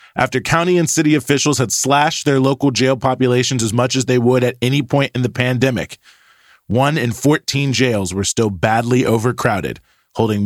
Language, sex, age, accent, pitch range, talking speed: English, male, 30-49, American, 110-140 Hz, 180 wpm